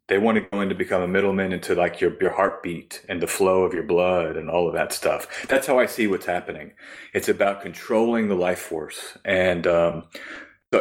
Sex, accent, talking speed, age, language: male, American, 220 wpm, 30-49, English